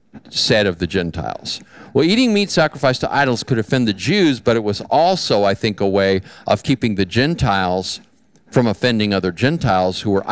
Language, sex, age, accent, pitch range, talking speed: English, male, 50-69, American, 105-145 Hz, 185 wpm